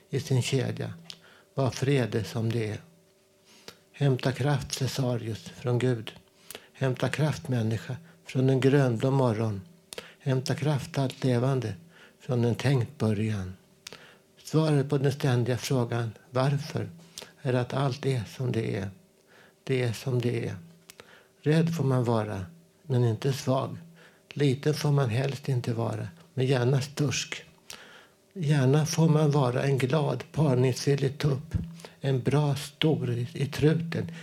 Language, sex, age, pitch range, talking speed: Swedish, male, 60-79, 125-155 Hz, 130 wpm